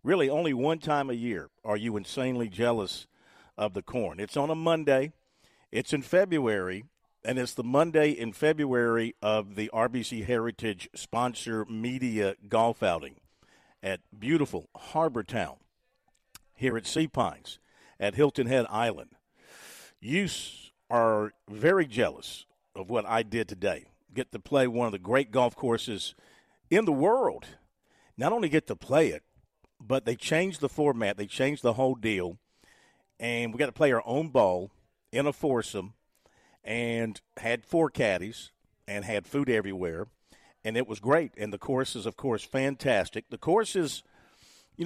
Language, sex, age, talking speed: English, male, 50-69, 155 wpm